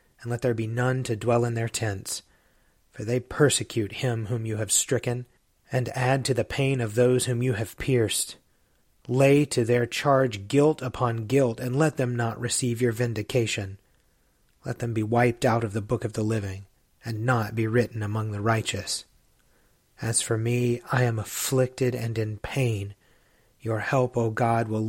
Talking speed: 180 wpm